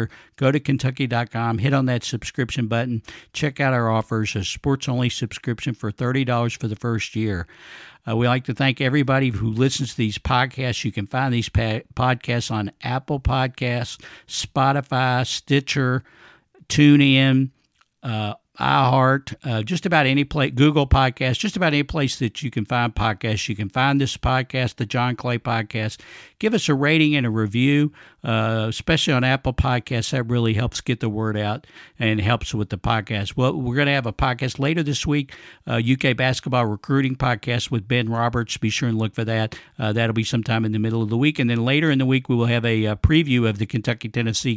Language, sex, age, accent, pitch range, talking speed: English, male, 60-79, American, 110-135 Hz, 190 wpm